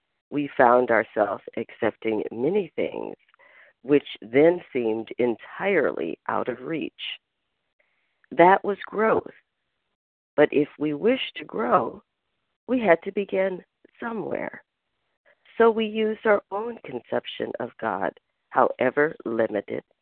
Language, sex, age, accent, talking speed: English, female, 50-69, American, 110 wpm